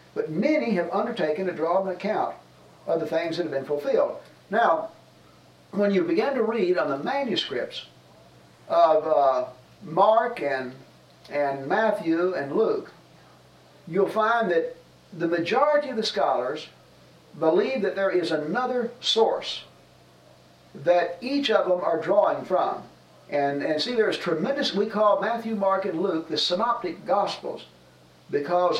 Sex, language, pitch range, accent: male, English, 145-205 Hz, American